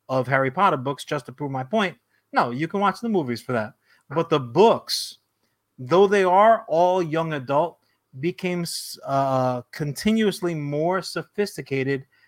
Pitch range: 135-180 Hz